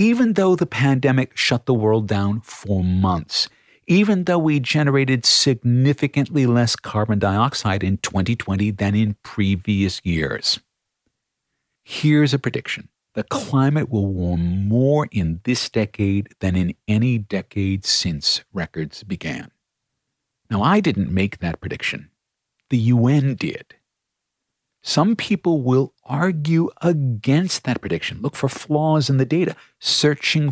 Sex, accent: male, American